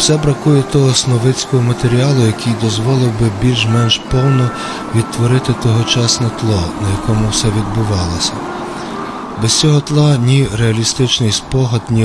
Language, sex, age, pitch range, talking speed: Ukrainian, male, 40-59, 105-130 Hz, 120 wpm